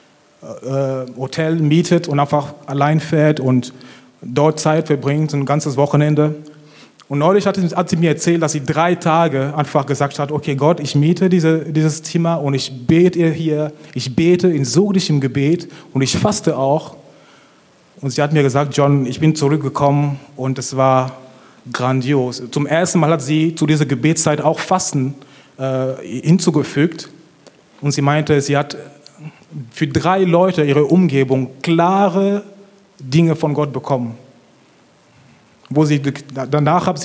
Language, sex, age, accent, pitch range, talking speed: German, male, 30-49, German, 145-185 Hz, 145 wpm